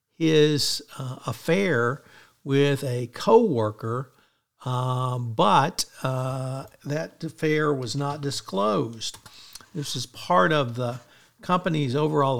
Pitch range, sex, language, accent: 125-150 Hz, male, English, American